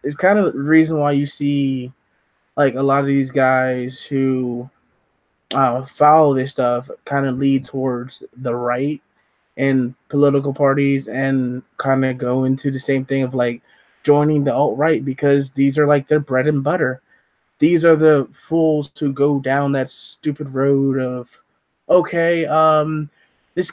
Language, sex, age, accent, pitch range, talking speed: English, male, 20-39, American, 130-150 Hz, 160 wpm